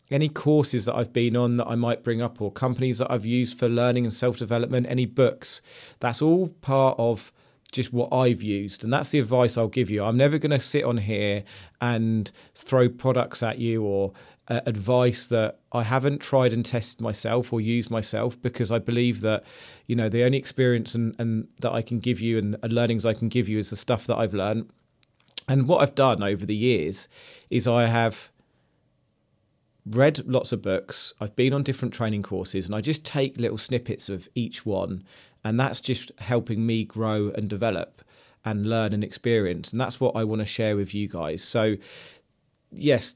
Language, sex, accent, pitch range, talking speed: English, male, British, 105-125 Hz, 200 wpm